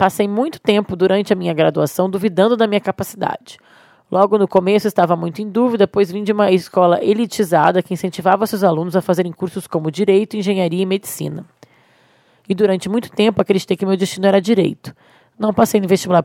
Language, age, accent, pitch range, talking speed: Portuguese, 20-39, Brazilian, 180-215 Hz, 185 wpm